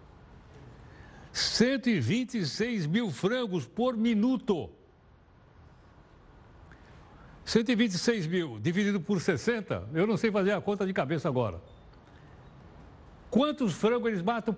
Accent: Brazilian